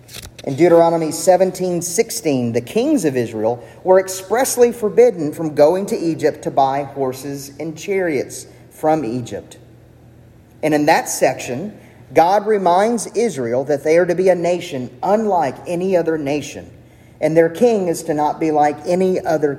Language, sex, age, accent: English, male, 40-59, American